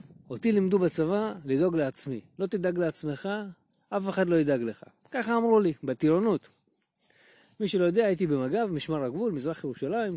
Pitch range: 140-190 Hz